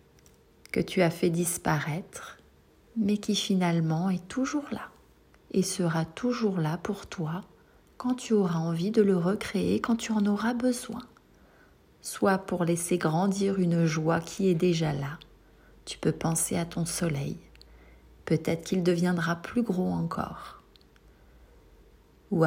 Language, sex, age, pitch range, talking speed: French, female, 40-59, 170-215 Hz, 140 wpm